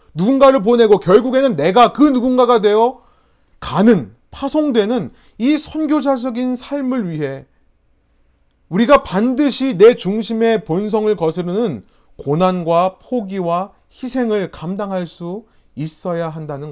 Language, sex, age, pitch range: Korean, male, 30-49, 145-215 Hz